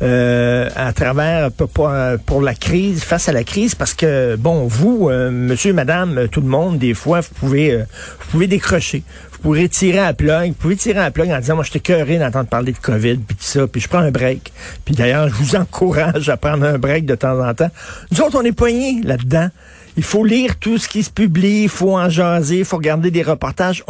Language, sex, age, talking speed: French, male, 50-69, 230 wpm